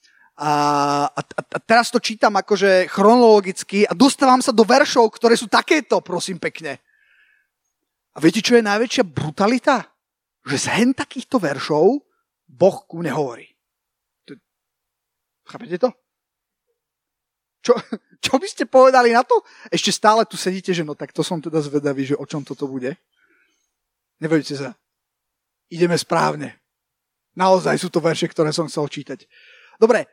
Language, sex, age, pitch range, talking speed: Slovak, male, 30-49, 175-260 Hz, 135 wpm